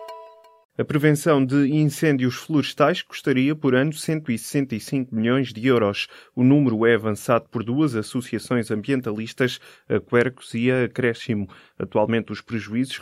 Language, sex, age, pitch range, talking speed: Portuguese, male, 20-39, 110-130 Hz, 130 wpm